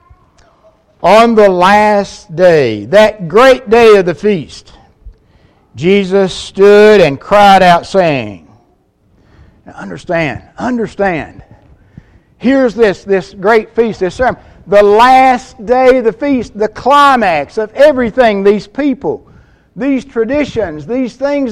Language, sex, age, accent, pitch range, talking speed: English, male, 60-79, American, 155-250 Hz, 115 wpm